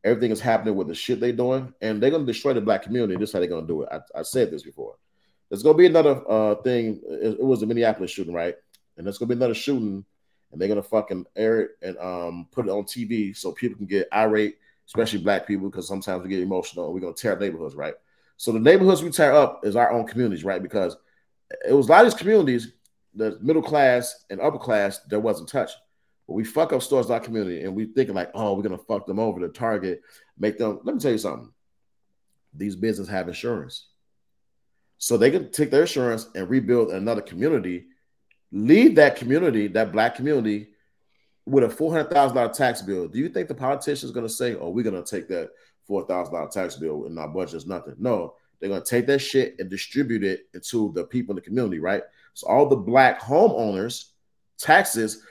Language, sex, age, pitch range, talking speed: English, male, 30-49, 100-130 Hz, 230 wpm